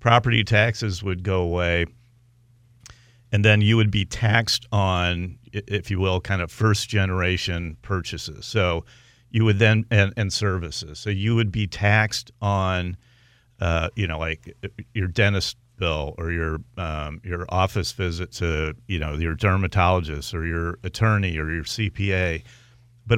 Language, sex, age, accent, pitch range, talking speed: English, male, 50-69, American, 90-120 Hz, 150 wpm